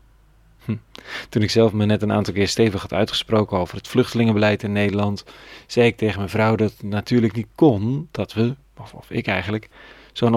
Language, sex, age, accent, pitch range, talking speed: Dutch, male, 40-59, Dutch, 95-120 Hz, 185 wpm